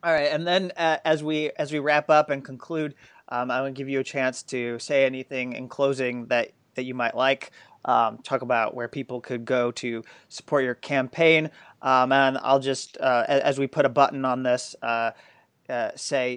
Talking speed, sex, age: 205 wpm, male, 30-49